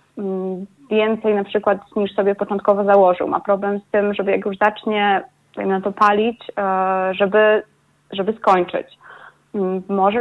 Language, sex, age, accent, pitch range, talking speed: Polish, female, 20-39, native, 190-215 Hz, 130 wpm